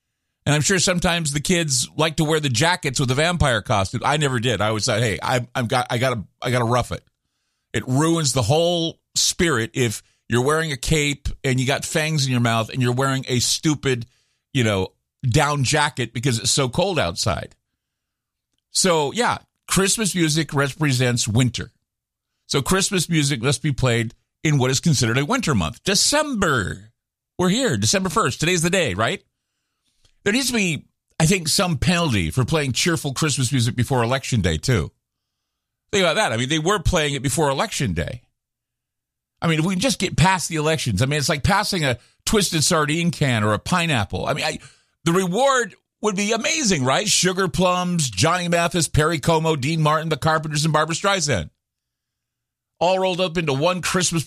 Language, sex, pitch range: English, male, 125-170 Hz